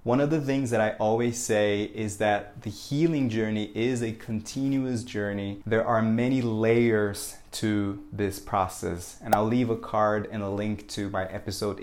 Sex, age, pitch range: male, 20-39, 100-120 Hz